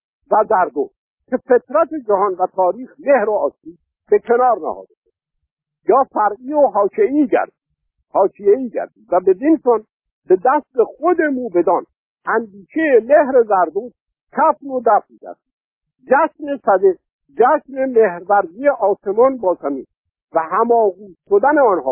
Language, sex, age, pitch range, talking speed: Persian, male, 50-69, 195-285 Hz, 120 wpm